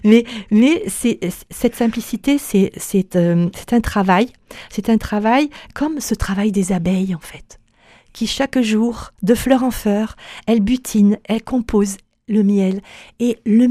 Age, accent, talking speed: 50-69, French, 160 wpm